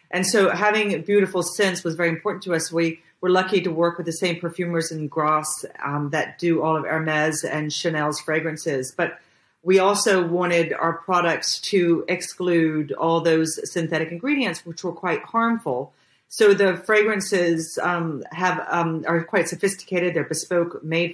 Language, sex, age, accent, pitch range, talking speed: English, female, 40-59, American, 160-185 Hz, 165 wpm